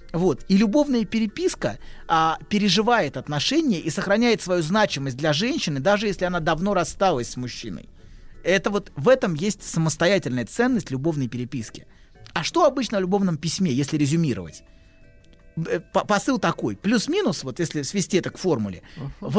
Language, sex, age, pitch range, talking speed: Russian, male, 30-49, 155-210 Hz, 145 wpm